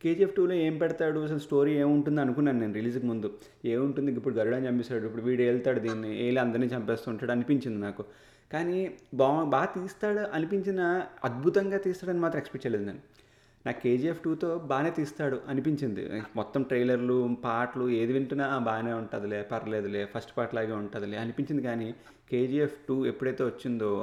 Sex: male